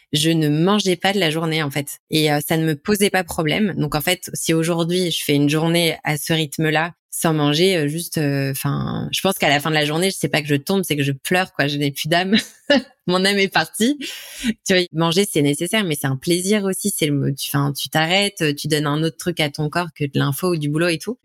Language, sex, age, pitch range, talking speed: French, female, 20-39, 150-180 Hz, 265 wpm